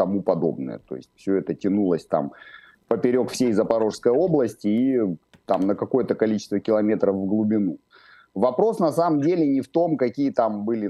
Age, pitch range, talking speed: 30-49, 100-125 Hz, 160 wpm